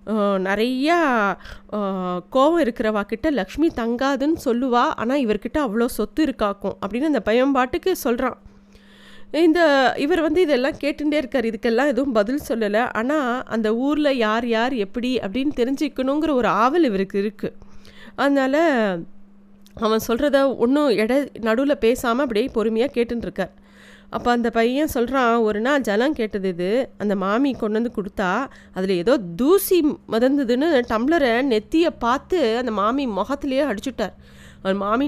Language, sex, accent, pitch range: Tamil, female, native, 215-280 Hz